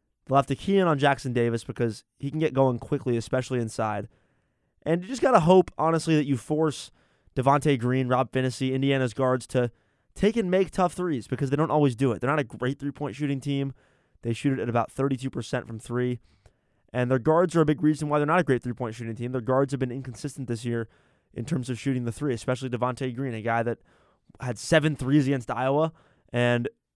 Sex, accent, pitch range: male, American, 120-150 Hz